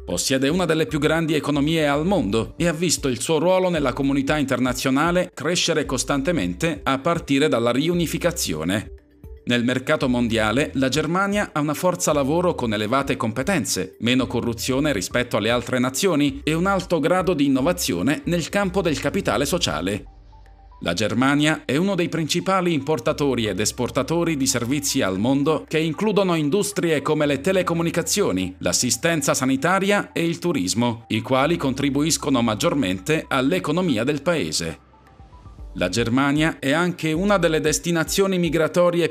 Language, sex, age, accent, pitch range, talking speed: Italian, male, 40-59, native, 125-170 Hz, 140 wpm